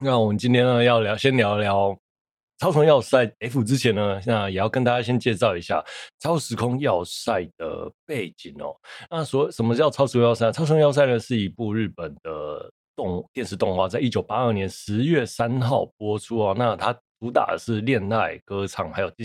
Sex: male